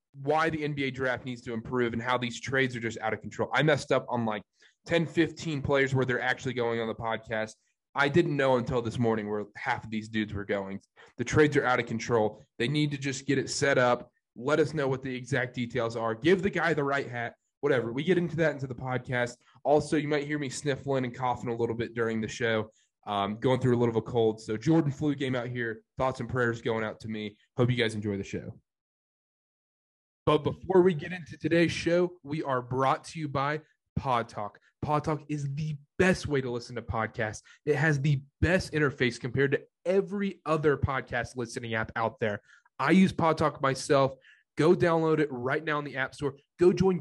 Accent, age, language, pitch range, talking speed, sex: American, 20-39, English, 120-155 Hz, 220 wpm, male